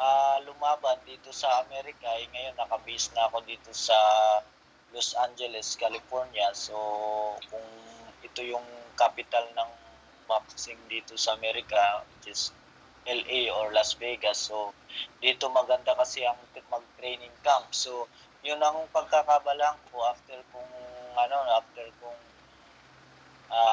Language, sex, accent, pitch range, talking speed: Filipino, male, native, 115-135 Hz, 120 wpm